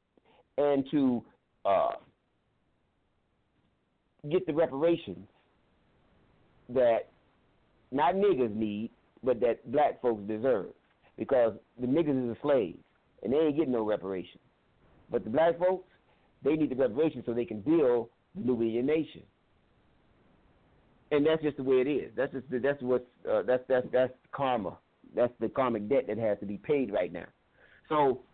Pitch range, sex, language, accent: 115-160 Hz, male, English, American